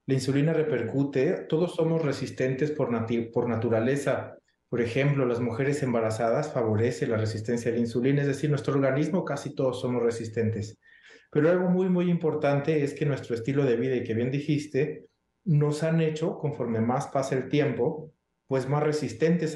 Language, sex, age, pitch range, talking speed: Spanish, male, 30-49, 120-150 Hz, 170 wpm